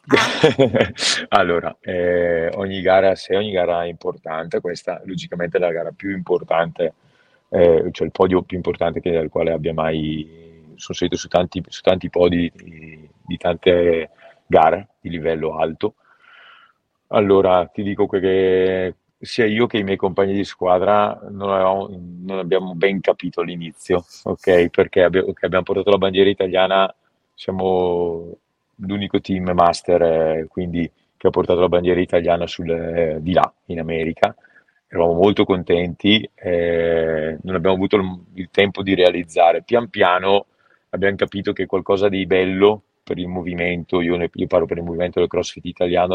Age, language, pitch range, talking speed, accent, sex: 30-49, Italian, 85-95 Hz, 155 wpm, native, male